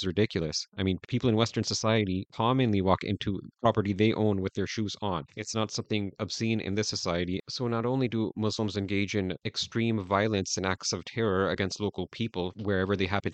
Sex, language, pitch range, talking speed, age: male, English, 95-110 Hz, 195 wpm, 30-49